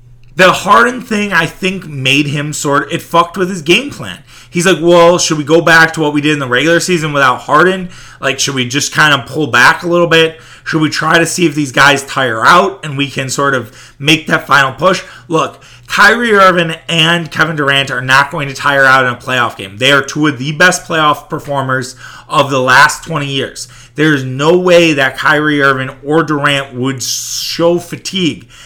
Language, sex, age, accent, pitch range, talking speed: English, male, 30-49, American, 135-170 Hz, 215 wpm